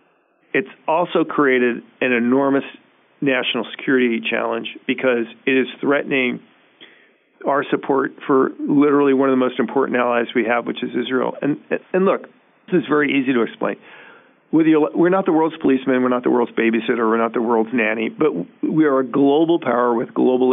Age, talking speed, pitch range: 40-59, 170 wpm, 125-155 Hz